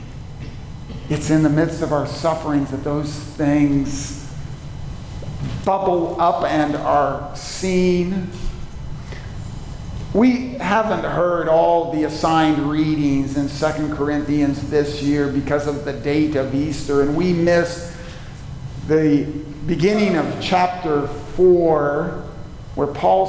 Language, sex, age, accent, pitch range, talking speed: English, male, 50-69, American, 140-180 Hz, 110 wpm